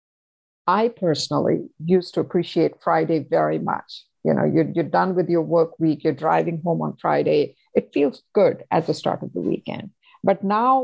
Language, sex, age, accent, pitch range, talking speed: English, female, 50-69, Indian, 165-200 Hz, 185 wpm